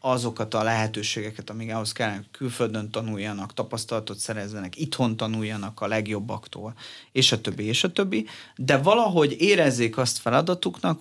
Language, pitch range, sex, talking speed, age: Hungarian, 110-135 Hz, male, 135 wpm, 30-49